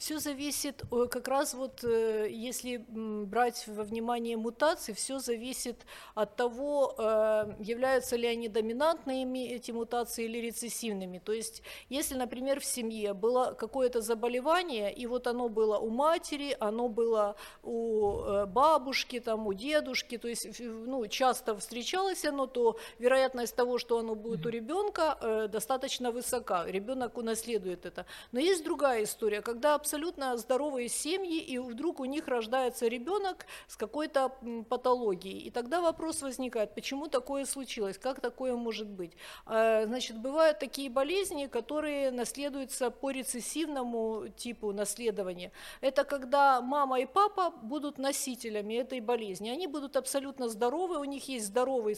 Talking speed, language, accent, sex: 135 wpm, Ukrainian, native, female